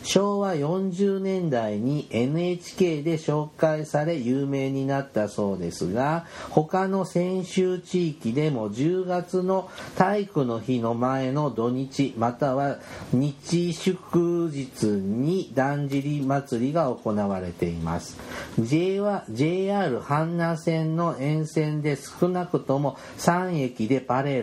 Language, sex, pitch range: Japanese, male, 125-170 Hz